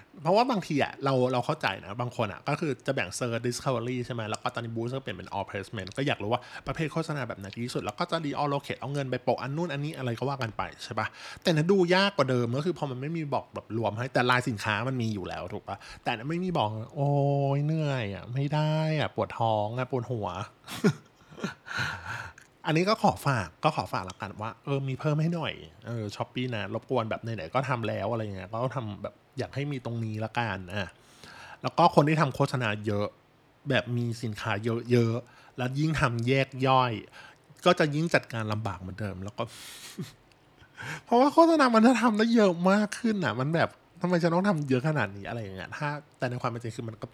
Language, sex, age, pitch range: Thai, male, 20-39, 115-150 Hz